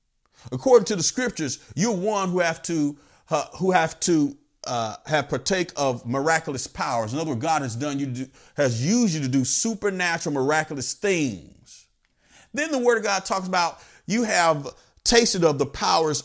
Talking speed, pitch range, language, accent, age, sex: 180 wpm, 140-215 Hz, English, American, 40-59, male